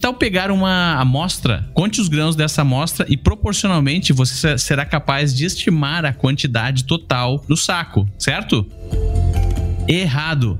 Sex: male